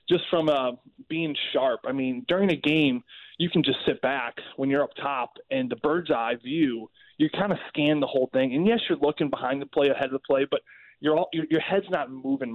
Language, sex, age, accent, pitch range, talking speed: English, male, 20-39, American, 130-165 Hz, 240 wpm